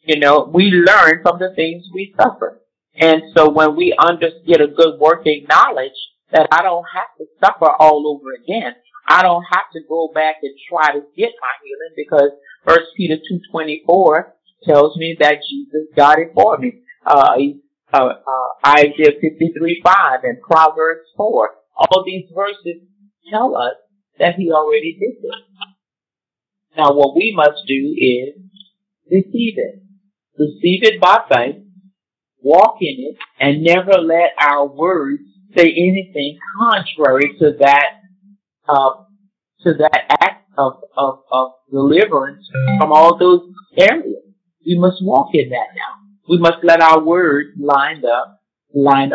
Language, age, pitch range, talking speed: English, 50-69, 150-195 Hz, 150 wpm